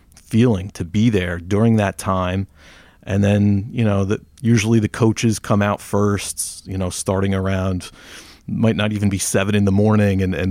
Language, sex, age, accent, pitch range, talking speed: English, male, 30-49, American, 95-110 Hz, 185 wpm